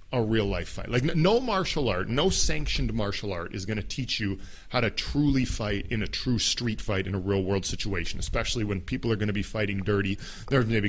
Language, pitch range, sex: English, 95-130 Hz, male